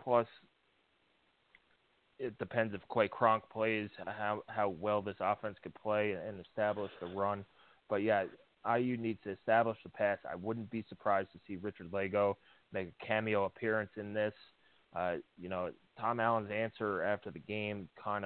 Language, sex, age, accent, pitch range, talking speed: English, male, 20-39, American, 95-115 Hz, 165 wpm